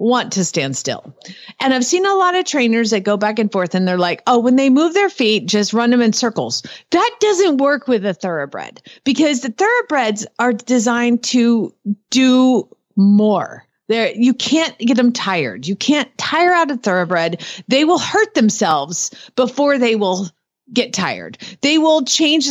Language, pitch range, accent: English, 185-255 Hz, American